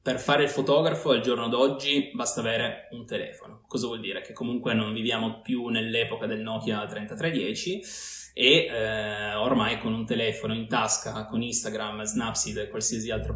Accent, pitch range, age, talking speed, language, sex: native, 110-135 Hz, 20-39, 165 wpm, Italian, male